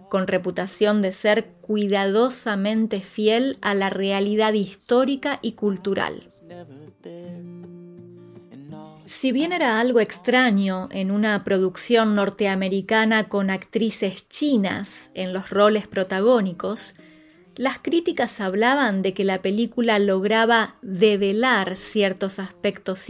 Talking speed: 100 wpm